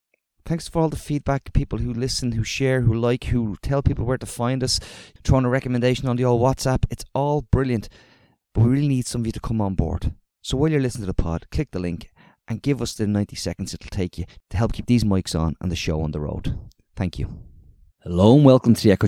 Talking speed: 250 wpm